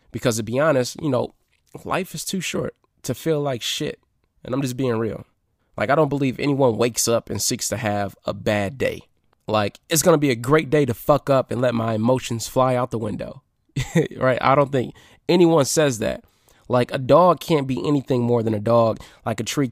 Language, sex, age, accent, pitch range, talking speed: English, male, 20-39, American, 115-145 Hz, 220 wpm